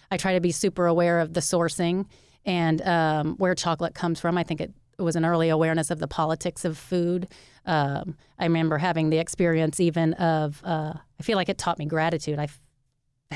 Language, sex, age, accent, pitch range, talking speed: English, female, 30-49, American, 160-190 Hz, 200 wpm